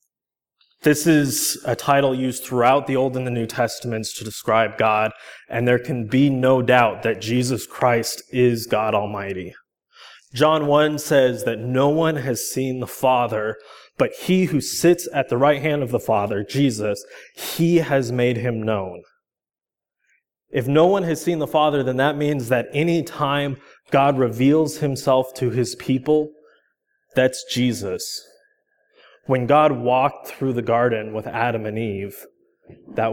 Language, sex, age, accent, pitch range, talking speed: English, male, 20-39, American, 120-150 Hz, 155 wpm